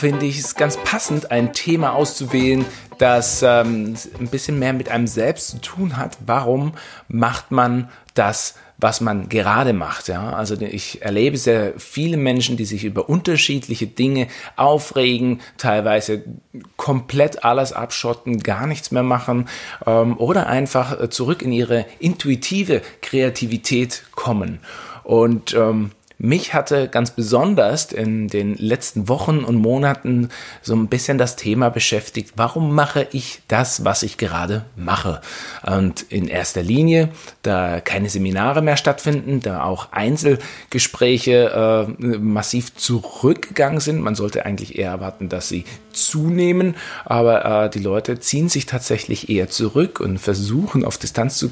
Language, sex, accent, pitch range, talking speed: German, male, German, 110-140 Hz, 140 wpm